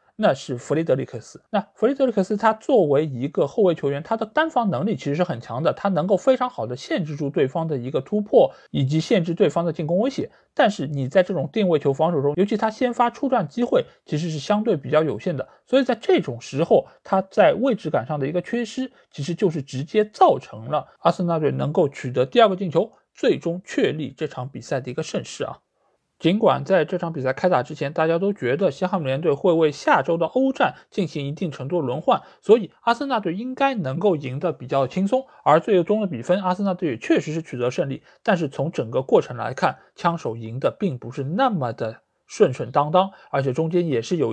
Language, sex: Chinese, male